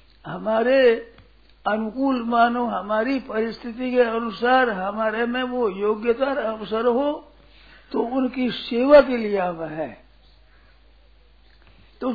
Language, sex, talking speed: Hindi, male, 105 wpm